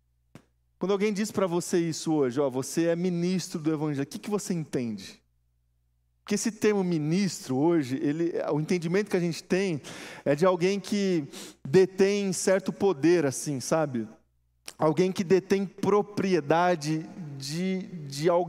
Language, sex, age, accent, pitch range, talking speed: Portuguese, male, 20-39, Brazilian, 160-210 Hz, 135 wpm